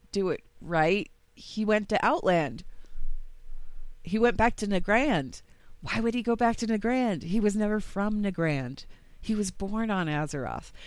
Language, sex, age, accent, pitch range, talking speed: English, female, 40-59, American, 150-205 Hz, 160 wpm